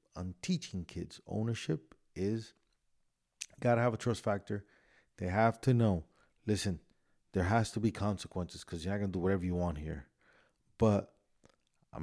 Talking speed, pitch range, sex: 165 wpm, 90-125 Hz, male